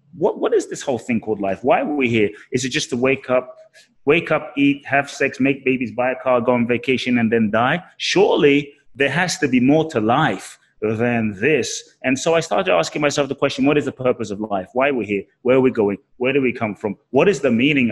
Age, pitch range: 30-49, 115-145 Hz